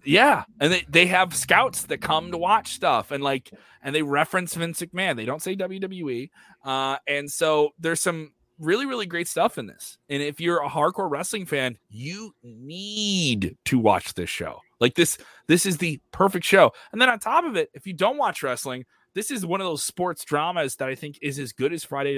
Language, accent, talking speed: English, American, 215 wpm